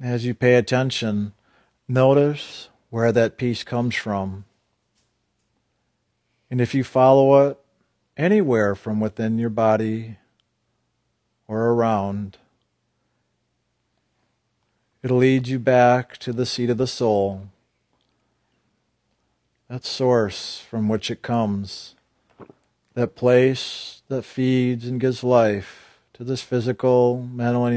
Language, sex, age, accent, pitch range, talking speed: English, male, 50-69, American, 110-125 Hz, 110 wpm